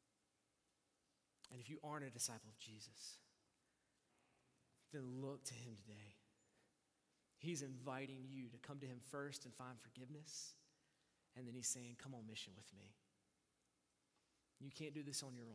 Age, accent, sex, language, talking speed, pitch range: 30-49, American, male, English, 150 wpm, 125-165 Hz